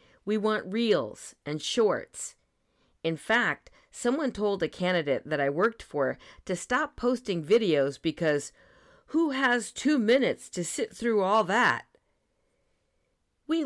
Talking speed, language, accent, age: 130 wpm, English, American, 50-69